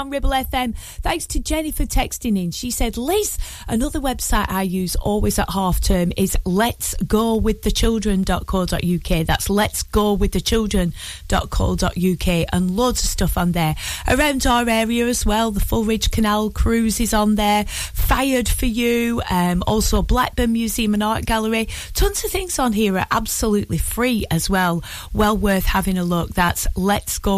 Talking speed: 175 wpm